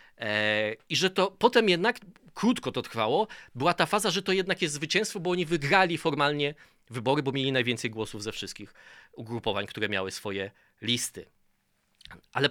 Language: Polish